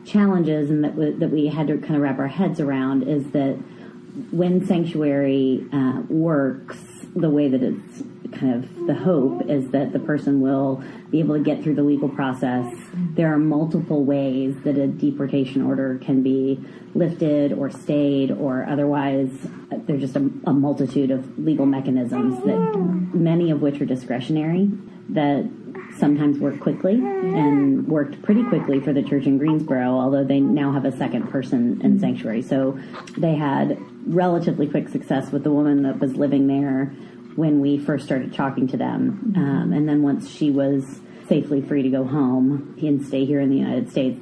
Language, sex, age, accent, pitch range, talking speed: English, female, 30-49, American, 135-160 Hz, 175 wpm